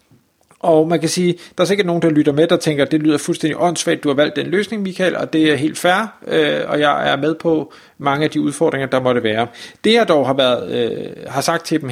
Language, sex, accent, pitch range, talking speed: Danish, male, native, 140-170 Hz, 260 wpm